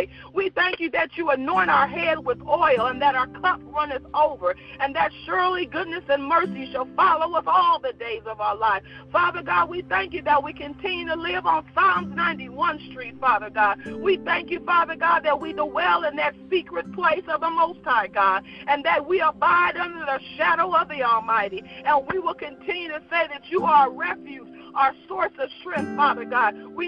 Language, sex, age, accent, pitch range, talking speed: English, female, 40-59, American, 285-350 Hz, 205 wpm